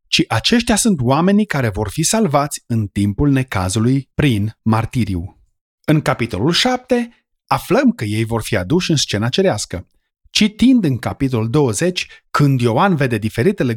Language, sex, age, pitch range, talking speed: Romanian, male, 30-49, 115-180 Hz, 145 wpm